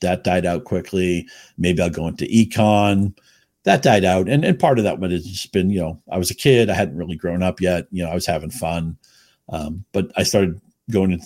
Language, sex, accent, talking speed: English, male, American, 240 wpm